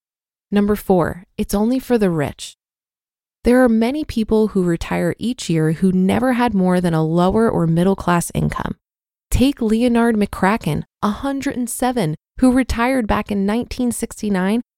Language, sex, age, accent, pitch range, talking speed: English, female, 20-39, American, 185-245 Hz, 140 wpm